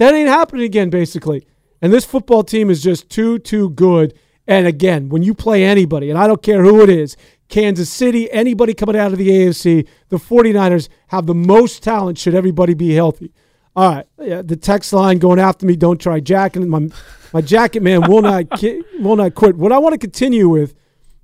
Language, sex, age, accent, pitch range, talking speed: English, male, 40-59, American, 170-215 Hz, 205 wpm